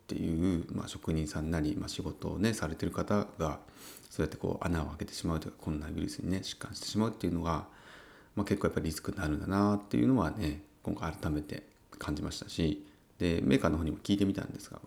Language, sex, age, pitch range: Japanese, male, 30-49, 80-105 Hz